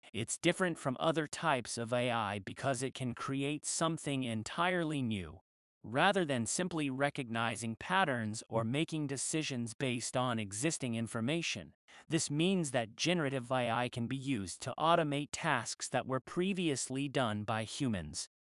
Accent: American